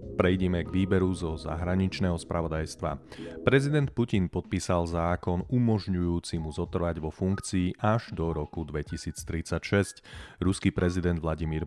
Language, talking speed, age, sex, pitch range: Slovak, 115 wpm, 30-49, male, 80-100 Hz